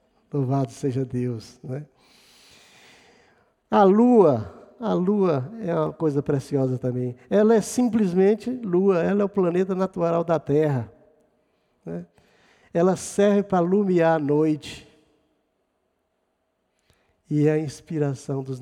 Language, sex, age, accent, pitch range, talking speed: Portuguese, male, 50-69, Brazilian, 145-175 Hz, 115 wpm